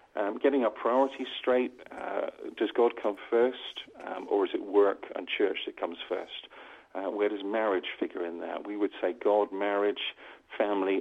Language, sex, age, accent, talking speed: English, male, 50-69, British, 180 wpm